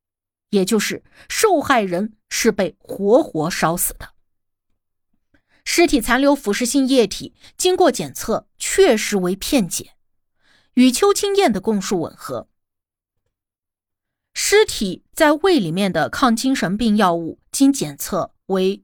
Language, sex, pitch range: Chinese, female, 185-300 Hz